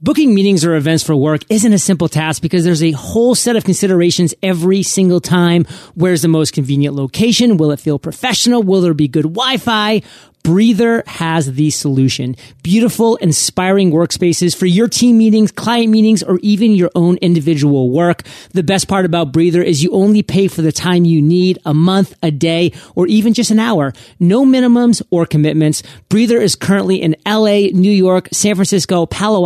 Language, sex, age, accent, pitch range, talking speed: English, male, 40-59, American, 160-200 Hz, 185 wpm